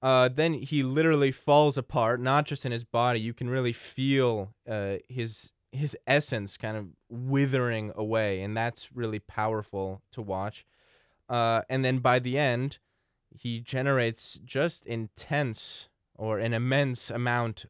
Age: 20-39